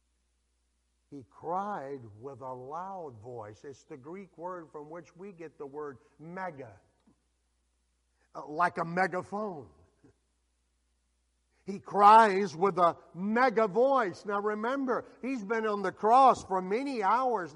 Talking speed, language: 125 wpm, English